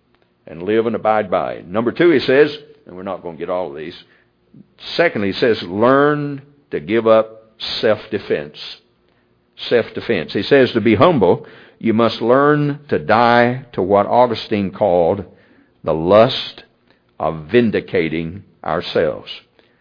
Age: 60-79